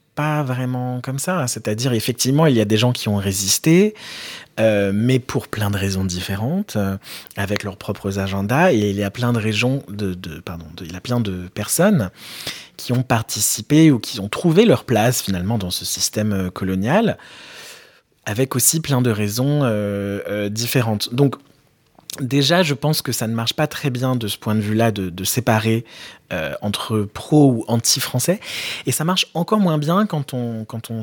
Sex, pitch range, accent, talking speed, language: male, 105-140 Hz, French, 190 wpm, English